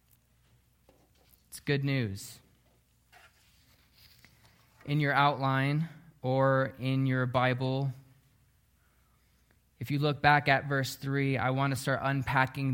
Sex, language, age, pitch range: male, English, 20-39, 125-165 Hz